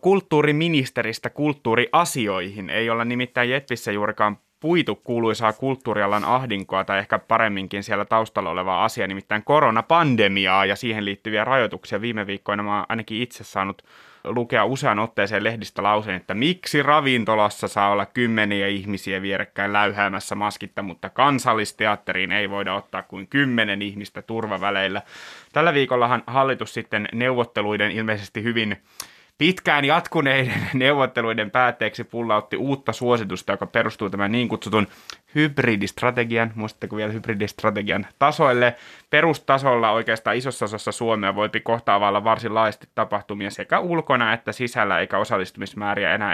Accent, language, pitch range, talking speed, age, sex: native, Finnish, 100-125 Hz, 125 wpm, 20-39, male